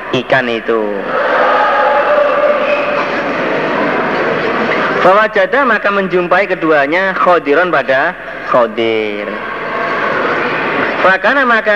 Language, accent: Indonesian, native